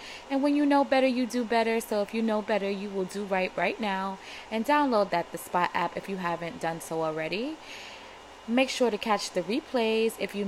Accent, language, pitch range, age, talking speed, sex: American, English, 190-235 Hz, 20-39, 225 wpm, female